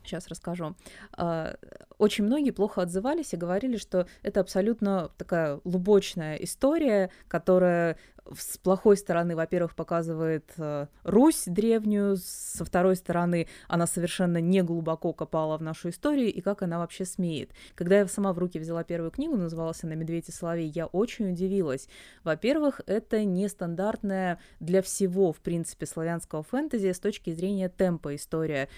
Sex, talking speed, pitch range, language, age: female, 140 wpm, 165-200 Hz, Russian, 20-39